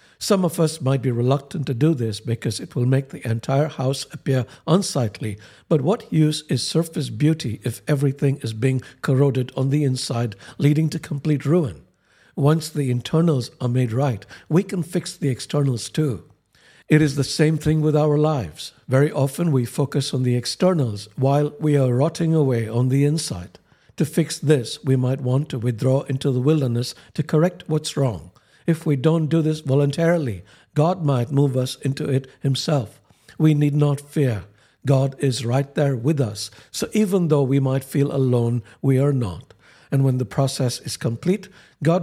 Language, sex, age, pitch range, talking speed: English, male, 60-79, 125-150 Hz, 180 wpm